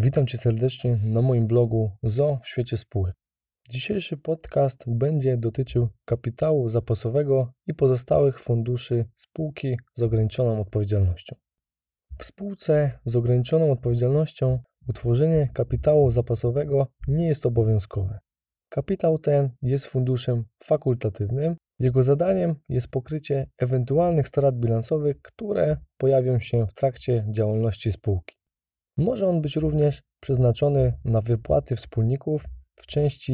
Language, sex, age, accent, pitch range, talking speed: Polish, male, 20-39, native, 115-145 Hz, 115 wpm